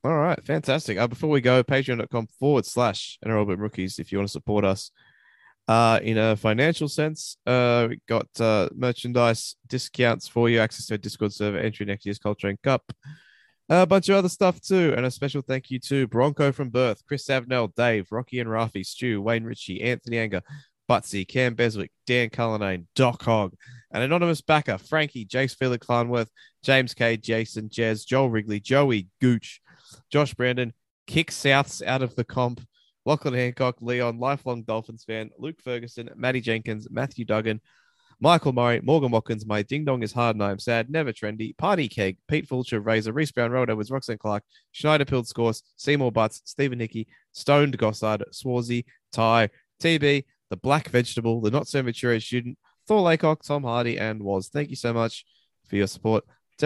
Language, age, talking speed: English, 20-39, 180 wpm